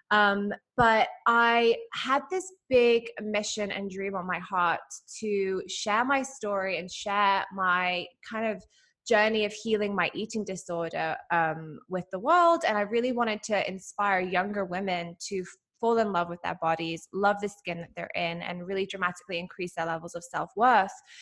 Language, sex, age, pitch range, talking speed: English, female, 20-39, 185-235 Hz, 170 wpm